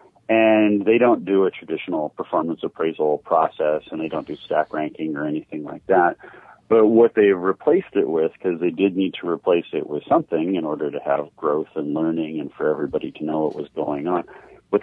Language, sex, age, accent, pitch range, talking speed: English, male, 40-59, American, 85-110 Hz, 205 wpm